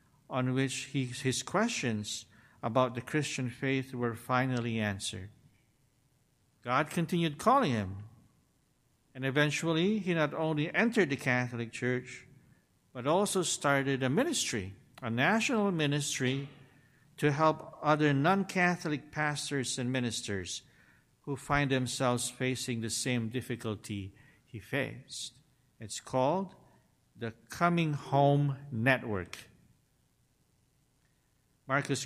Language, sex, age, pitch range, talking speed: English, male, 50-69, 120-145 Hz, 105 wpm